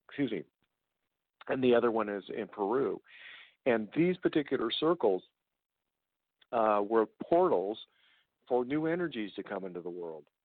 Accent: American